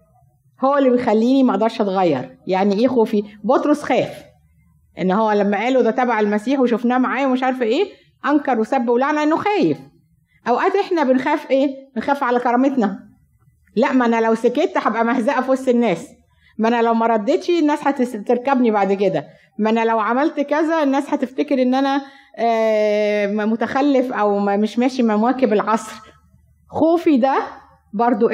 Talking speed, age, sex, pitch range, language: 145 wpm, 20-39, female, 195-255 Hz, Arabic